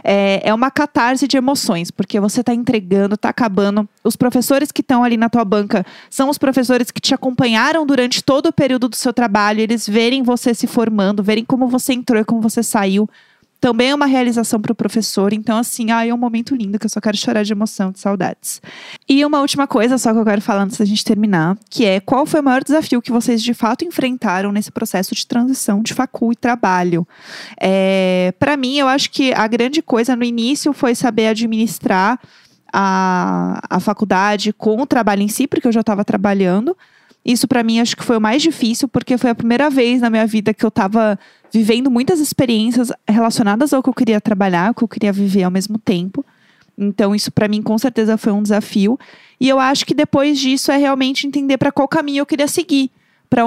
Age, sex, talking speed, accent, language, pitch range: 20-39, female, 215 wpm, Brazilian, Portuguese, 210-260 Hz